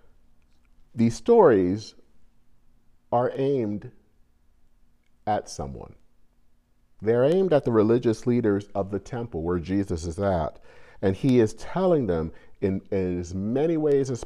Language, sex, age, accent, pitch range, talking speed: English, male, 50-69, American, 80-120 Hz, 120 wpm